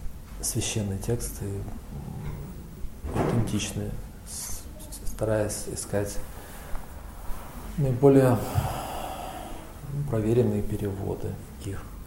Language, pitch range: English, 85-115 Hz